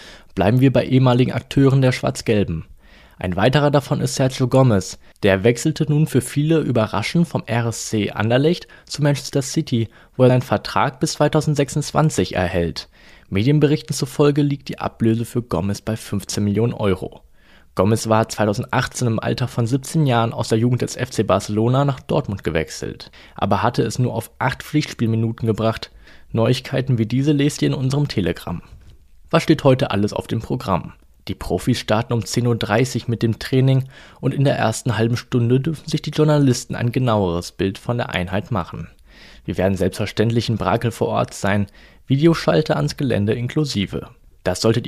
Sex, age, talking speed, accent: male, 20-39, 165 wpm, German